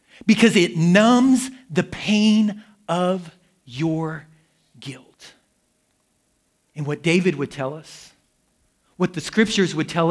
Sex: male